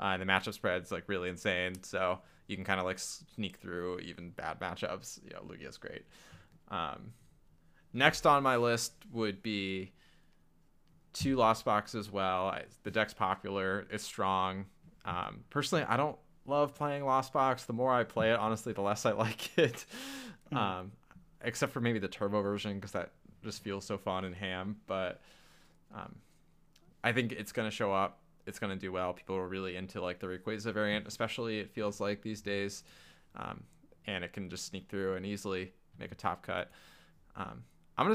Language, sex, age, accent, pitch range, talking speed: English, male, 20-39, American, 95-115 Hz, 190 wpm